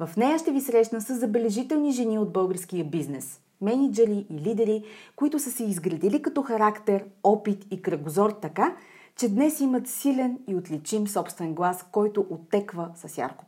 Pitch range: 180-250 Hz